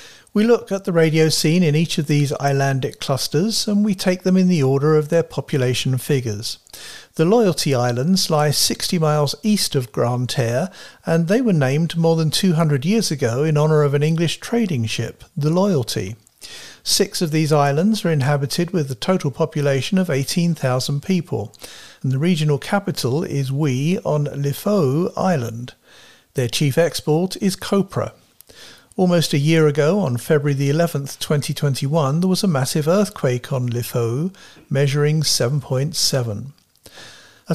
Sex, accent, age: male, British, 50-69